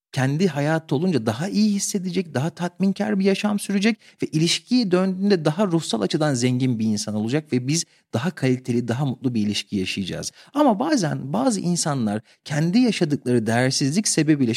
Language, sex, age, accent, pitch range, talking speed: Turkish, male, 40-59, native, 120-170 Hz, 155 wpm